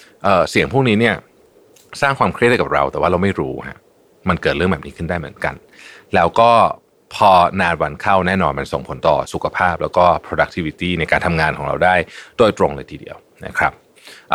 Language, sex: Thai, male